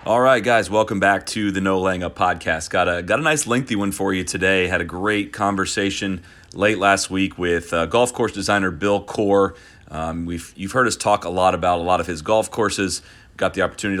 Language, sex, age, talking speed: English, male, 30-49, 225 wpm